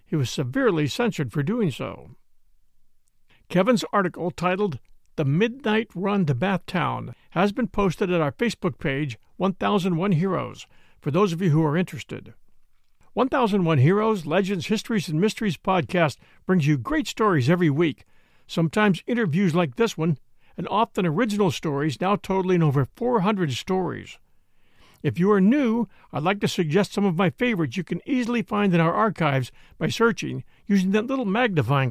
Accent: American